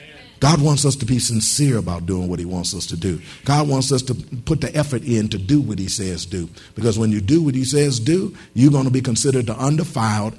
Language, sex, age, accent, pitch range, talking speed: English, male, 50-69, American, 110-145 Hz, 250 wpm